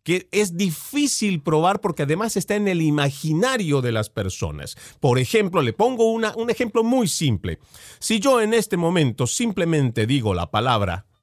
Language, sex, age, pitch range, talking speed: Spanish, male, 40-59, 130-210 Hz, 160 wpm